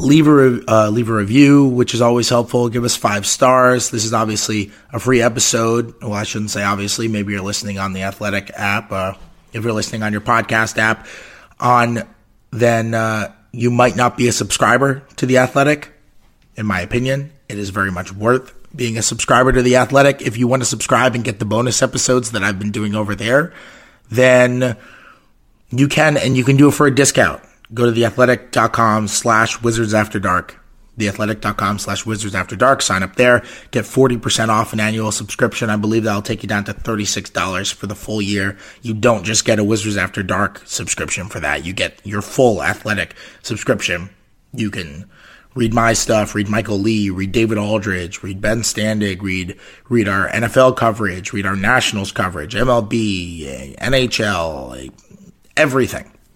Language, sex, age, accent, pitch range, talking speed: English, male, 30-49, American, 100-125 Hz, 175 wpm